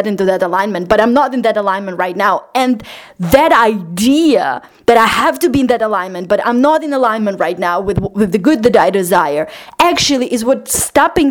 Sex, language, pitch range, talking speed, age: female, English, 200-255 Hz, 210 wpm, 20-39